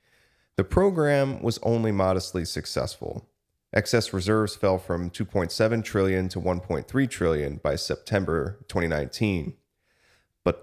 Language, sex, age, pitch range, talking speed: English, male, 30-49, 90-115 Hz, 105 wpm